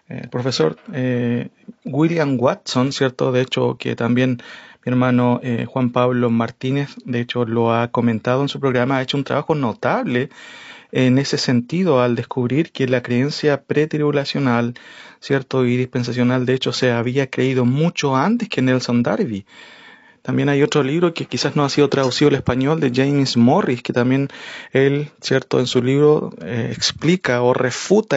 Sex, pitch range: male, 125-155 Hz